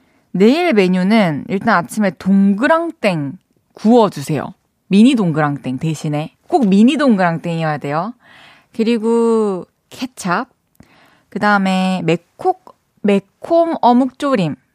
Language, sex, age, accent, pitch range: Korean, female, 20-39, native, 165-230 Hz